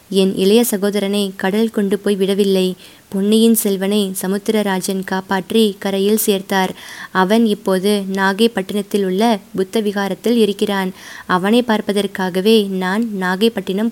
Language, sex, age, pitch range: Tamil, female, 20-39, 195-225 Hz